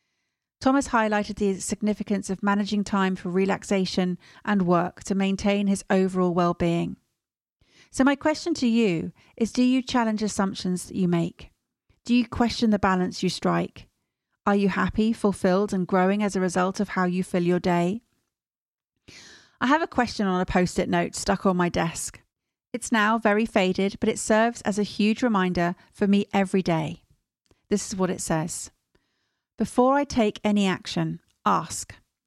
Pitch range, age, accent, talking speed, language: 180-220 Hz, 40-59, British, 165 wpm, English